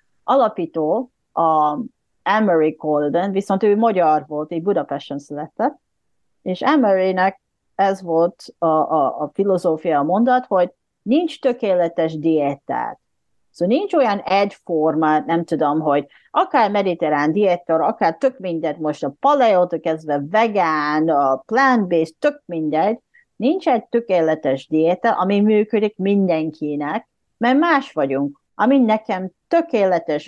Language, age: Hungarian, 40-59